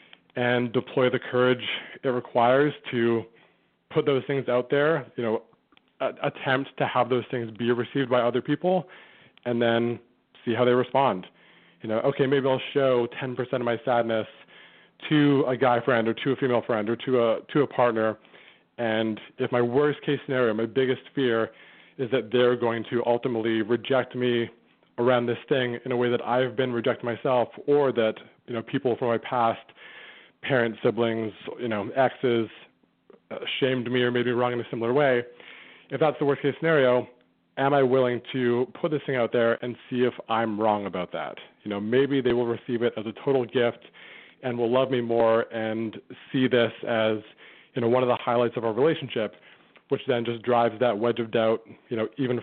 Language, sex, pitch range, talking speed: English, male, 115-130 Hz, 195 wpm